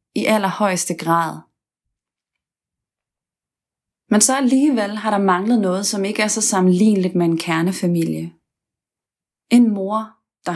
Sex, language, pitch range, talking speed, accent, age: female, Danish, 180-220 Hz, 120 wpm, native, 30-49